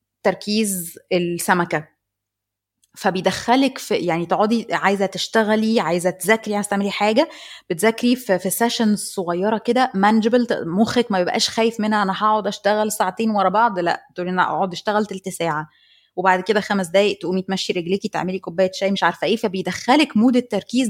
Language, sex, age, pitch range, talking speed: Arabic, female, 20-39, 185-230 Hz, 150 wpm